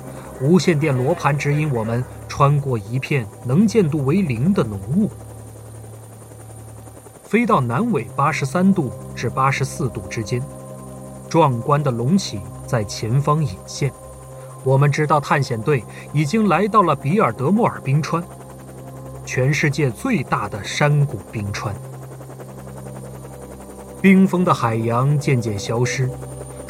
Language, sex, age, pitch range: Chinese, male, 30-49, 110-145 Hz